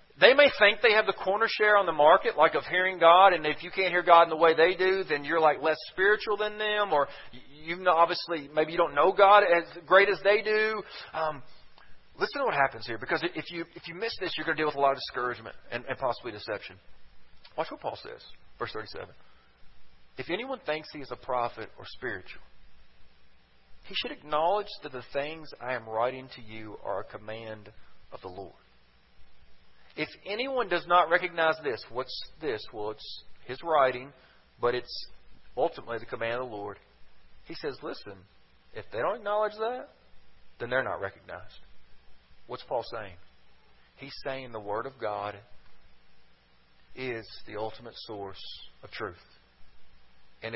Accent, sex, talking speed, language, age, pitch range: American, male, 180 wpm, English, 40-59, 100-170 Hz